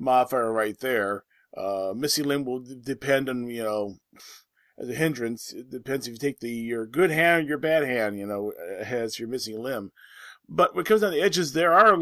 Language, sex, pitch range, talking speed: English, male, 120-160 Hz, 205 wpm